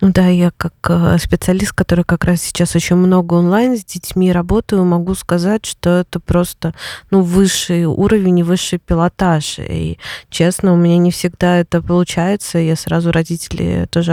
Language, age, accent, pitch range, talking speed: Russian, 20-39, native, 170-195 Hz, 155 wpm